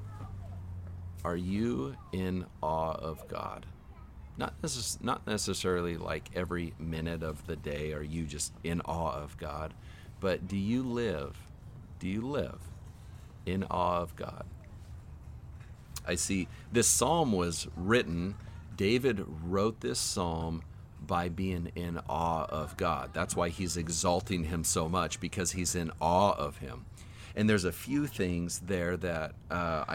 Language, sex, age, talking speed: English, male, 40-59, 140 wpm